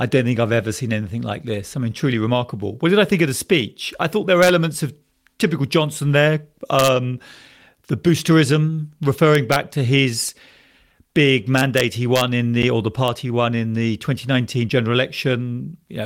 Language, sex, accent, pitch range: English, male, British, 120-150 Hz